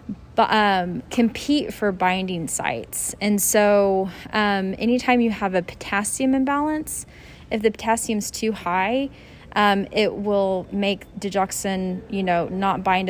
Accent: American